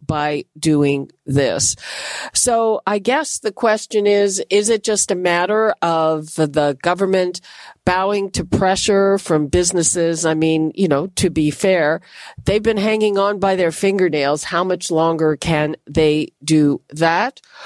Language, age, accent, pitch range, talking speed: English, 50-69, American, 160-210 Hz, 145 wpm